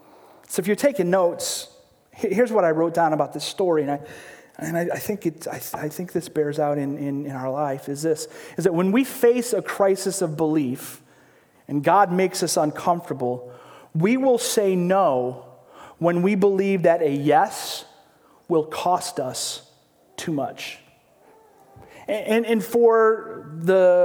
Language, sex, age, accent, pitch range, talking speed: English, male, 40-59, American, 150-200 Hz, 165 wpm